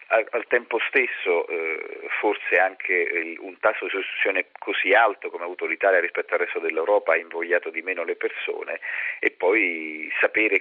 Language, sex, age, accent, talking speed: Italian, male, 40-59, native, 160 wpm